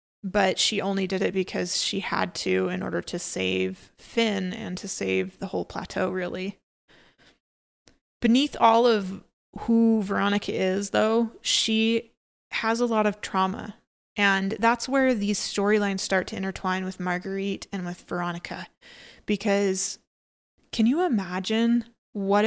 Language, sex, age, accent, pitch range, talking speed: English, female, 20-39, American, 185-215 Hz, 140 wpm